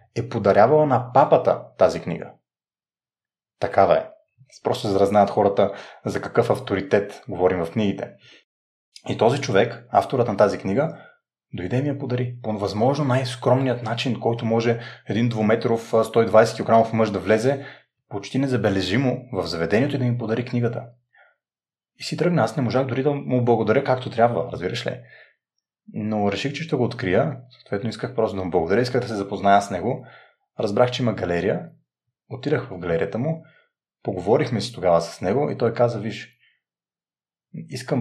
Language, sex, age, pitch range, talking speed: Bulgarian, male, 30-49, 105-130 Hz, 160 wpm